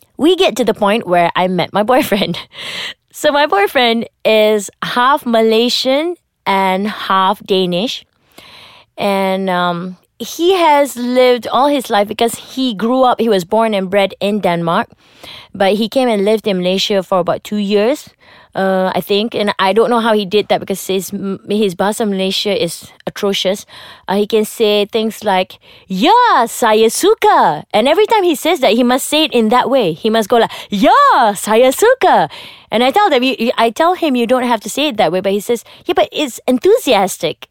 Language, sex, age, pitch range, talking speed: English, female, 20-39, 190-245 Hz, 195 wpm